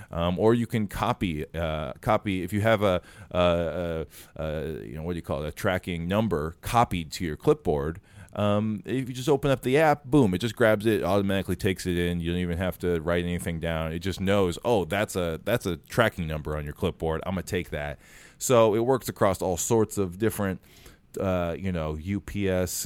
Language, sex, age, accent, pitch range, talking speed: English, male, 20-39, American, 85-110 Hz, 215 wpm